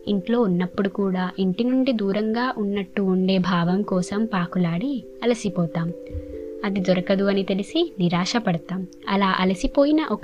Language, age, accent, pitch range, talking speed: Telugu, 20-39, native, 180-230 Hz, 115 wpm